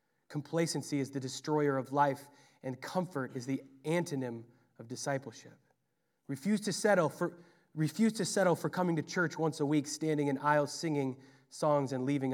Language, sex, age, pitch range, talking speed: English, male, 20-39, 135-160 Hz, 150 wpm